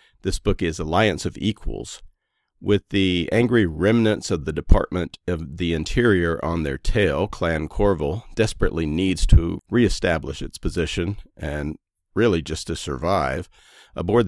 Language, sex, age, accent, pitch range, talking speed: English, male, 50-69, American, 80-100 Hz, 140 wpm